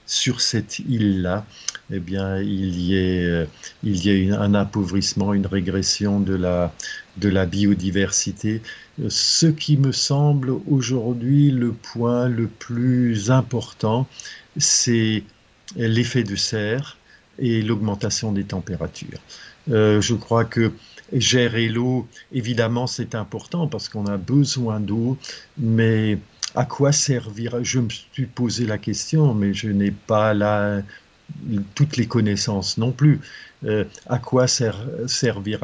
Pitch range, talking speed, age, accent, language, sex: 100-125 Hz, 130 wpm, 50-69, French, French, male